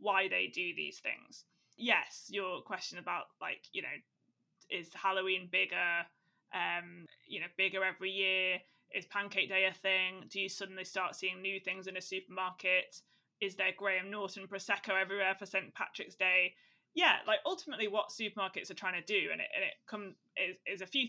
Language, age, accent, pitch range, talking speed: English, 20-39, British, 190-240 Hz, 180 wpm